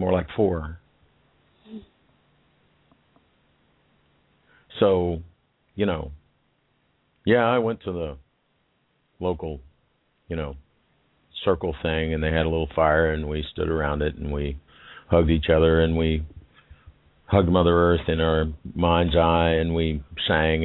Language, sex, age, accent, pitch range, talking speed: English, male, 50-69, American, 75-95 Hz, 130 wpm